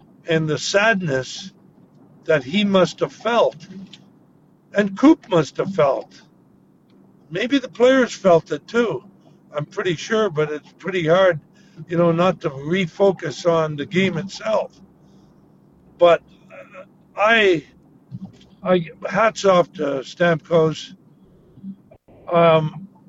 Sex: male